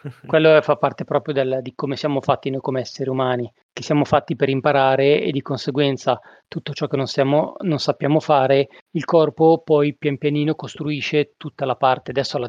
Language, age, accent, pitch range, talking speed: Italian, 30-49, native, 130-155 Hz, 185 wpm